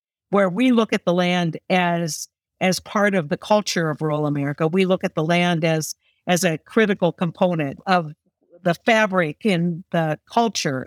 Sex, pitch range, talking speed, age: female, 160-195 Hz, 170 wpm, 50-69